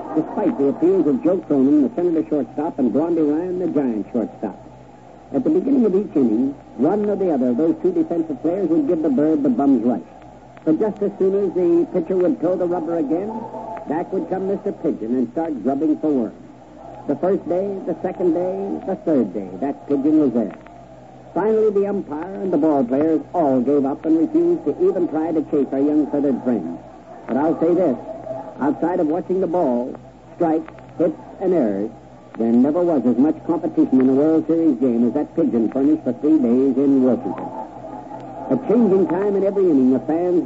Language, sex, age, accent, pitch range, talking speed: English, male, 60-79, American, 145-210 Hz, 195 wpm